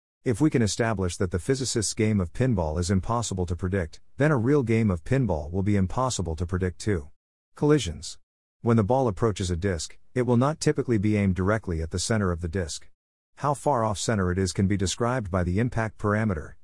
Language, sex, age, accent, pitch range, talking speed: English, male, 50-69, American, 90-115 Hz, 215 wpm